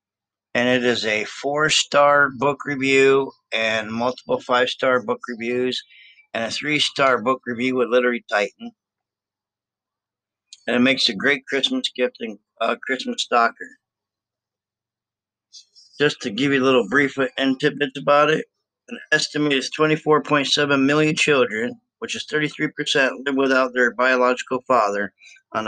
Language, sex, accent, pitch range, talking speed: English, male, American, 125-145 Hz, 135 wpm